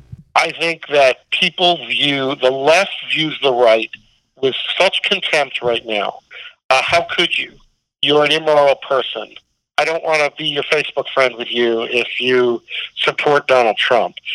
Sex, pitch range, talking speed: male, 125-155 Hz, 160 wpm